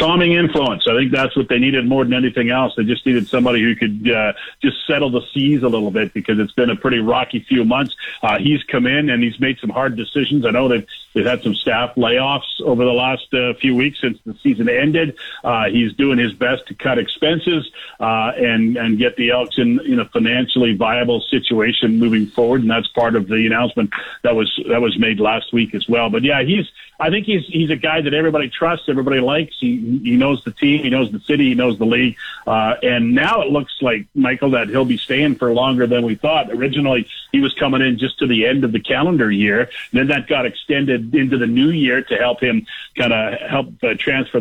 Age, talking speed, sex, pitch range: 50-69, 230 wpm, male, 120-150 Hz